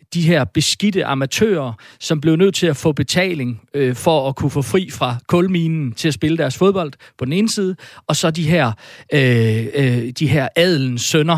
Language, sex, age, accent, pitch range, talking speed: Danish, male, 40-59, native, 140-180 Hz, 195 wpm